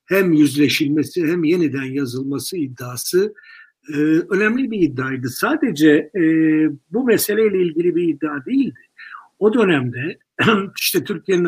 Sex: male